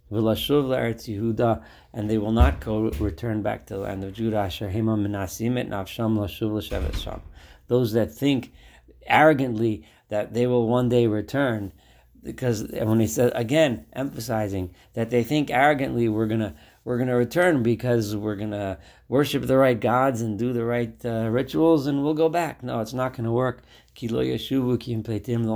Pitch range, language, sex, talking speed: 105-125 Hz, English, male, 150 wpm